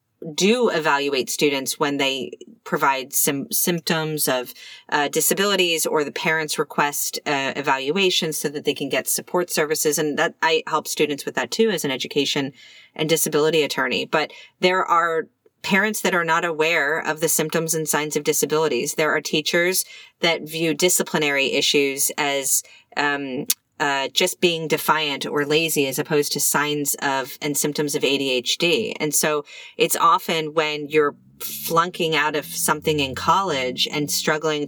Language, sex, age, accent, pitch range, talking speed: English, female, 30-49, American, 145-175 Hz, 155 wpm